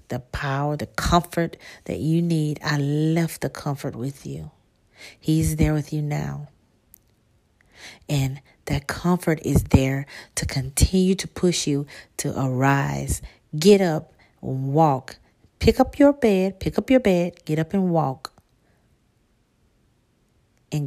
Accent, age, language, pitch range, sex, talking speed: American, 40-59, English, 135-175 Hz, female, 130 wpm